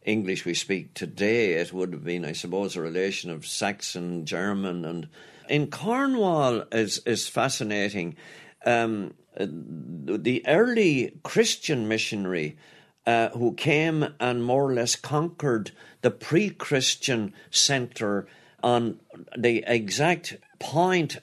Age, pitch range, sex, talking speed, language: 60-79, 110-150 Hz, male, 115 wpm, English